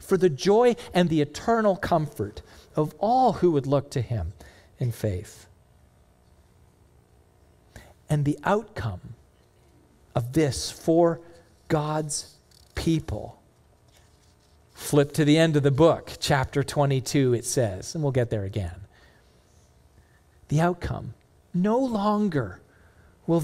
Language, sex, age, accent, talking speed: English, male, 40-59, American, 115 wpm